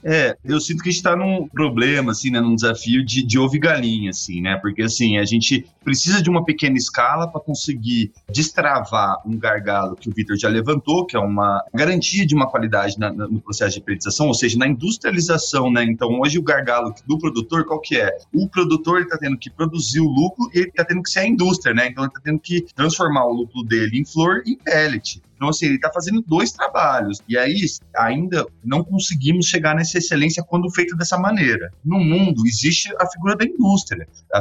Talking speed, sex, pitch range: 215 wpm, male, 115-175 Hz